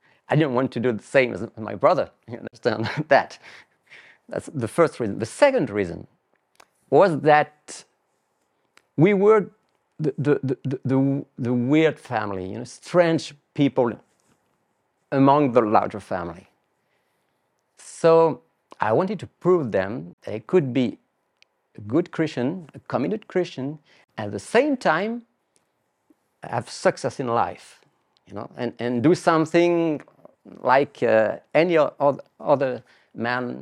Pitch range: 125-170 Hz